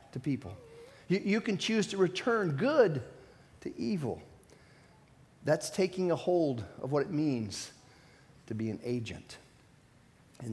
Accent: American